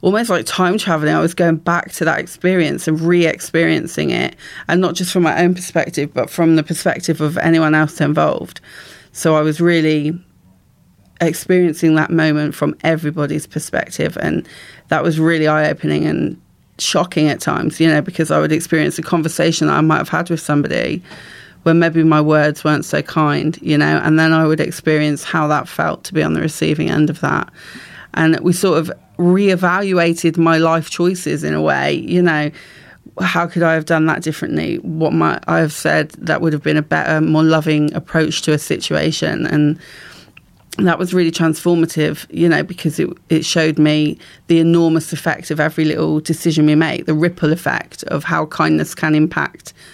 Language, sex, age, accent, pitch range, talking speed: English, female, 30-49, British, 150-170 Hz, 185 wpm